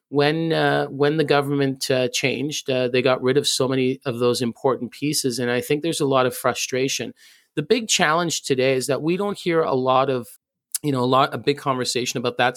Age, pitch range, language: 30-49, 130-150 Hz, English